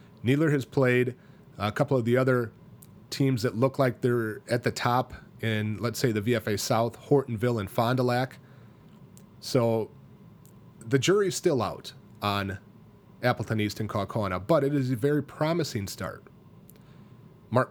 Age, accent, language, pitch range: 30-49, American, English, 110-135 Hz